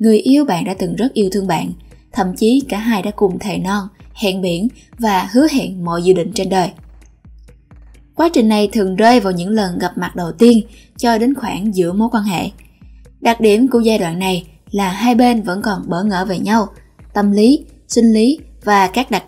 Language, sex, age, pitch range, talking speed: Vietnamese, female, 10-29, 195-235 Hz, 210 wpm